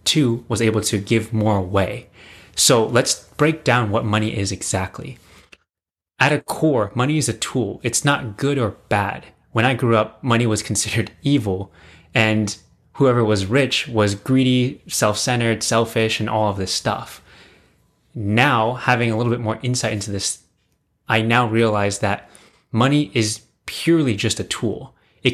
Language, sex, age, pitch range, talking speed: English, male, 20-39, 105-125 Hz, 160 wpm